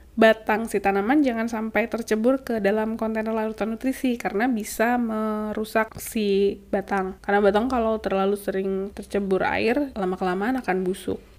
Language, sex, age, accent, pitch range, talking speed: Indonesian, female, 10-29, native, 205-240 Hz, 135 wpm